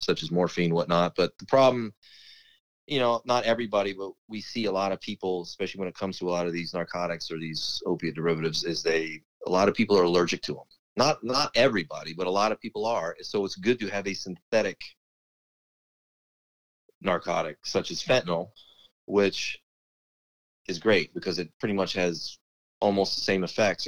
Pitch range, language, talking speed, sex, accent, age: 85-110 Hz, English, 185 wpm, male, American, 30-49